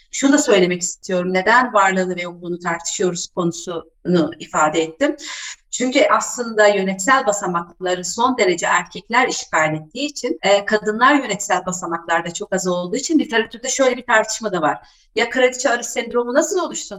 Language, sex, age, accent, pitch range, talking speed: Turkish, female, 40-59, native, 195-250 Hz, 145 wpm